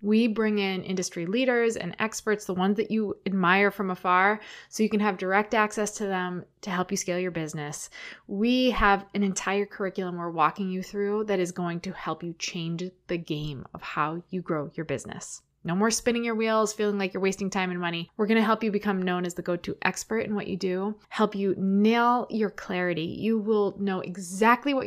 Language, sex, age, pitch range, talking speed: English, female, 20-39, 185-225 Hz, 210 wpm